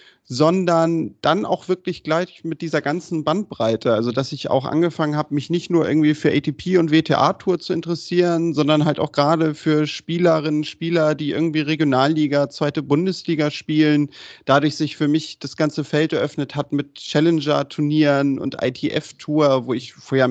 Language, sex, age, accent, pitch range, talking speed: German, male, 30-49, German, 140-165 Hz, 160 wpm